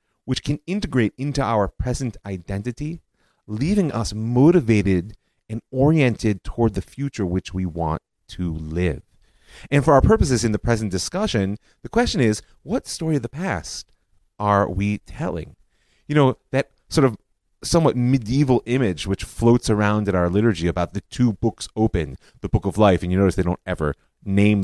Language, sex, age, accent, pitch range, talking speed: English, male, 30-49, American, 95-130 Hz, 170 wpm